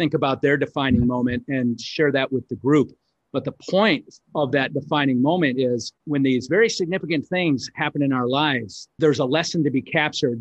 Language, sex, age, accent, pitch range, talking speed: English, male, 40-59, American, 130-150 Hz, 195 wpm